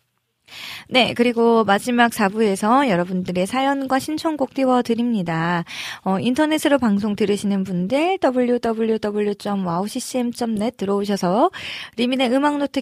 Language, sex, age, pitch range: Korean, female, 20-39, 185-255 Hz